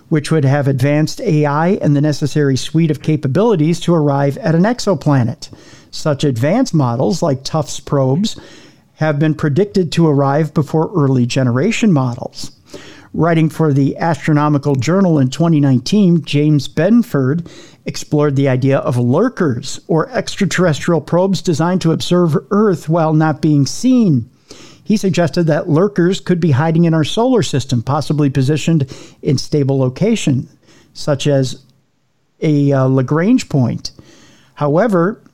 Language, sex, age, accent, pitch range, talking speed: English, male, 50-69, American, 140-170 Hz, 135 wpm